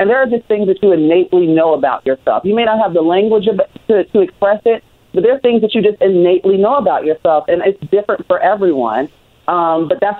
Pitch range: 150-205 Hz